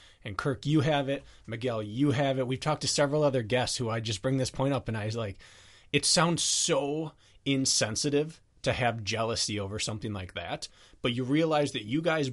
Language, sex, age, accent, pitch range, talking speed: English, male, 20-39, American, 100-130 Hz, 210 wpm